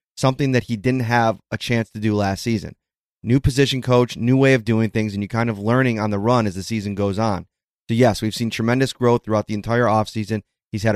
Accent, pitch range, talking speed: American, 105-130 Hz, 240 wpm